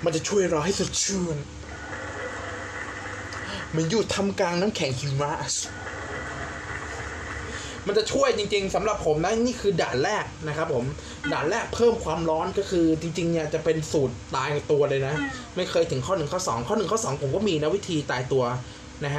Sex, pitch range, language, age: male, 120-165 Hz, Thai, 20-39